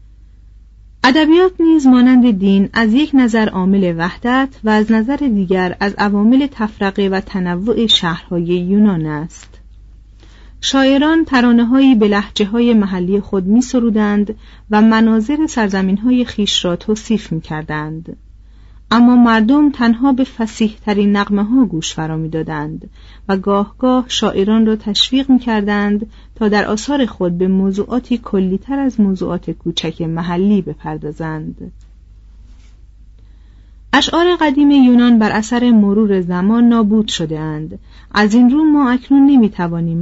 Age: 40-59